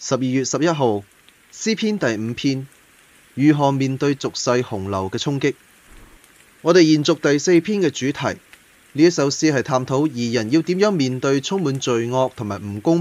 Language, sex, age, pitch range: Chinese, male, 20-39, 110-155 Hz